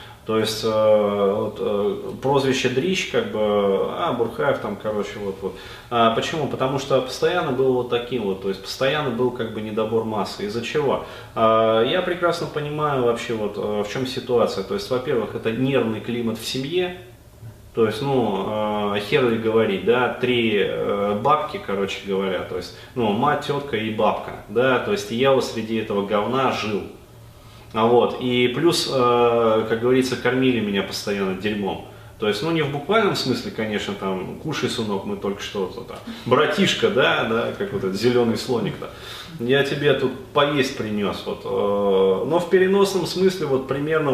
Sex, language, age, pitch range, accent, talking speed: male, Russian, 20-39, 110-130 Hz, native, 165 wpm